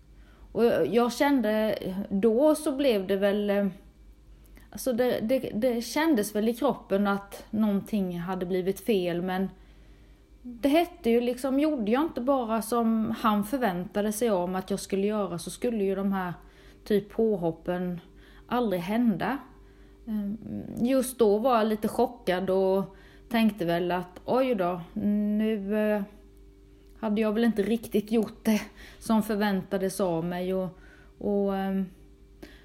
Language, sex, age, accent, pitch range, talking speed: Swedish, female, 30-49, native, 195-255 Hz, 140 wpm